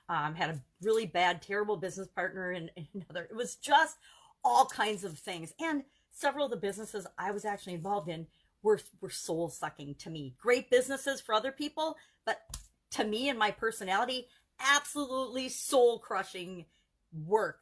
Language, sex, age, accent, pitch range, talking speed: English, female, 40-59, American, 180-260 Hz, 165 wpm